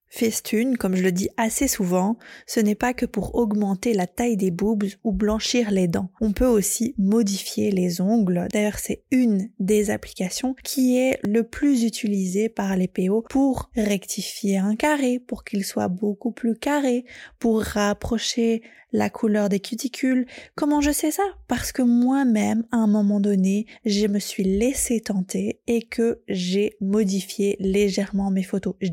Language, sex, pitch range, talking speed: French, female, 200-245 Hz, 165 wpm